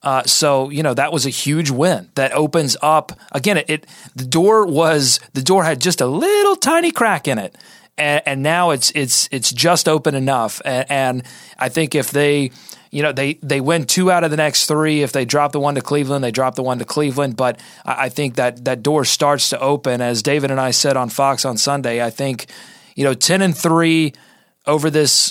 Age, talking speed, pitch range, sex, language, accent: 30-49, 225 wpm, 130-155 Hz, male, English, American